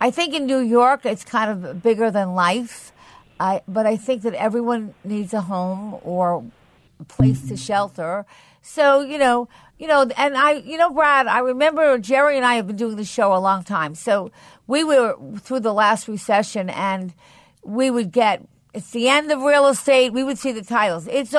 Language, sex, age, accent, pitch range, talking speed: English, female, 50-69, American, 210-265 Hz, 200 wpm